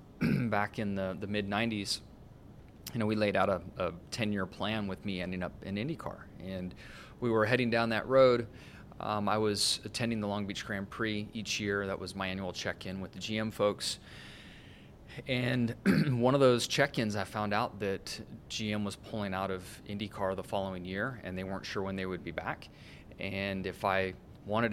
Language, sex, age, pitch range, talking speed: English, male, 30-49, 95-110 Hz, 190 wpm